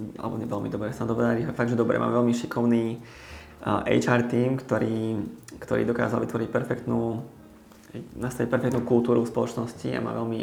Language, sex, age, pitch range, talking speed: Slovak, male, 20-39, 110-120 Hz, 155 wpm